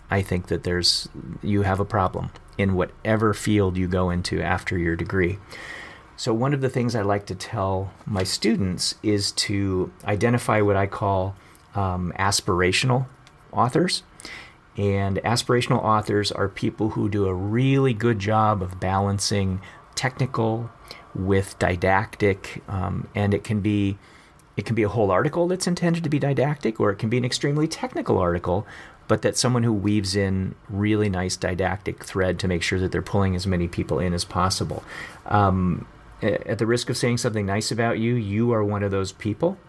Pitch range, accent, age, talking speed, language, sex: 95-115 Hz, American, 40-59, 175 wpm, English, male